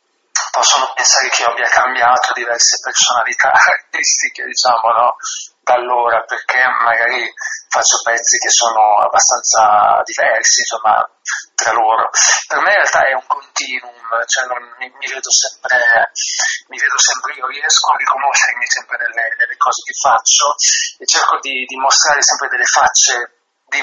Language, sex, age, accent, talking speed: Italian, male, 30-49, native, 150 wpm